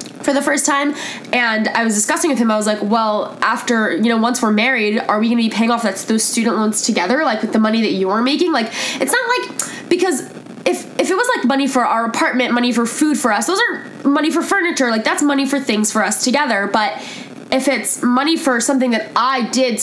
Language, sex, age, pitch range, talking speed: English, female, 10-29, 215-265 Hz, 240 wpm